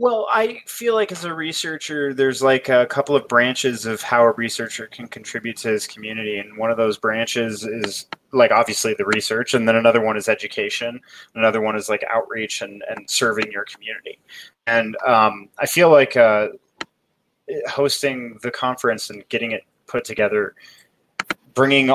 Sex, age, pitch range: male, 20-39, 115-140 Hz